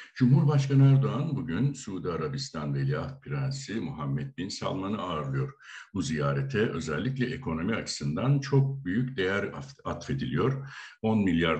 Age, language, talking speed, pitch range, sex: 60-79, Turkish, 115 wpm, 90-135 Hz, male